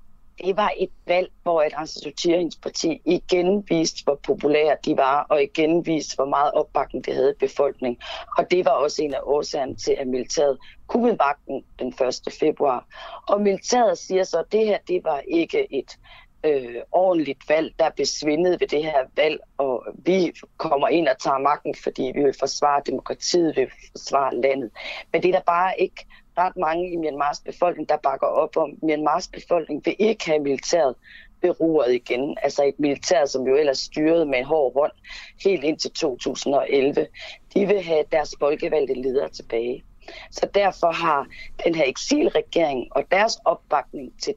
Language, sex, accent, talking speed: Danish, female, native, 175 wpm